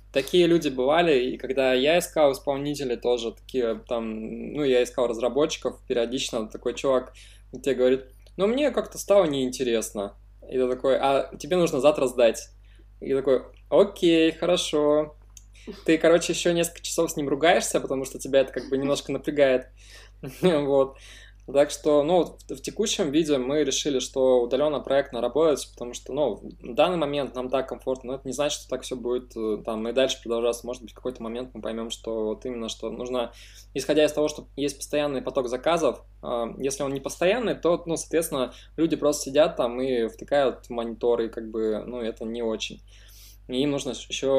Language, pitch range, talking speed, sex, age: Russian, 115-145 Hz, 175 wpm, male, 20-39